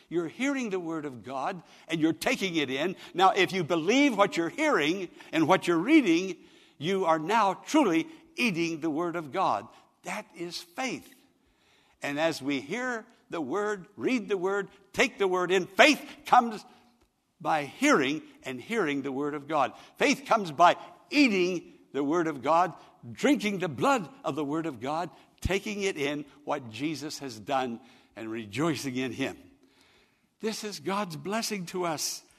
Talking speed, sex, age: 165 wpm, male, 60-79